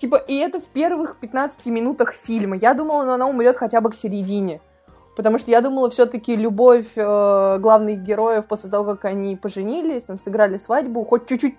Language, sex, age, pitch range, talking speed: Russian, female, 20-39, 205-245 Hz, 175 wpm